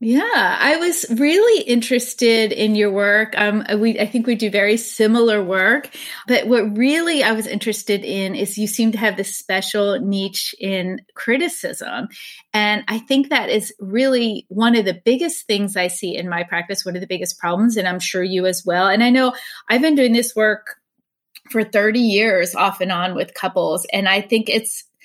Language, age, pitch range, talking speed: English, 30-49, 195-255 Hz, 195 wpm